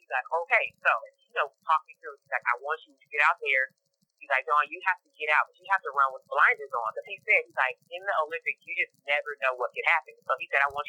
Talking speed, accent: 285 wpm, American